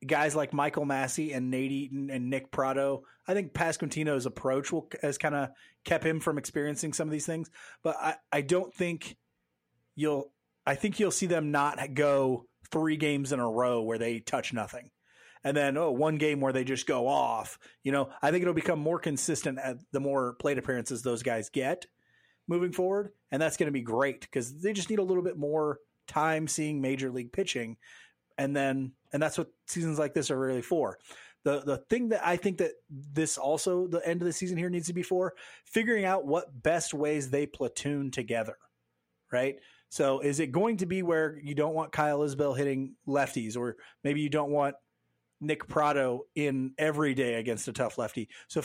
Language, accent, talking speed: English, American, 200 wpm